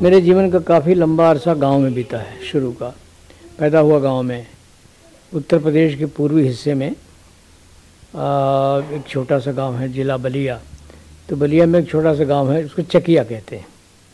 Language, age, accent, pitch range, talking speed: Hindi, 60-79, native, 125-150 Hz, 180 wpm